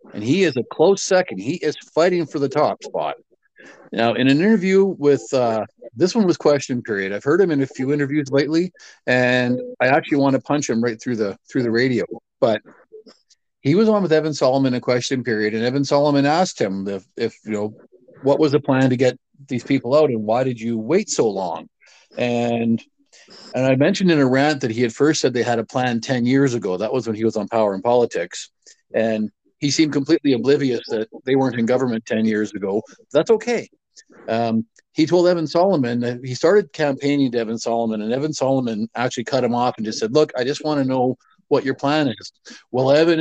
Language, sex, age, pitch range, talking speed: English, male, 50-69, 120-150 Hz, 220 wpm